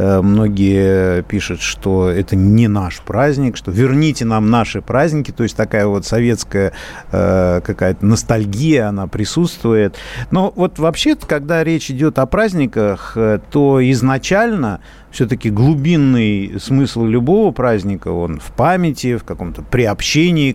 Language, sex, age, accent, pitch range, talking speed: Russian, male, 50-69, native, 105-150 Hz, 125 wpm